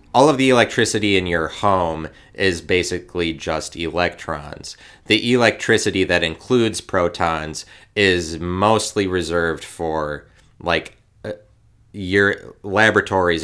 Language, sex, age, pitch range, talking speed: English, male, 30-49, 85-100 Hz, 105 wpm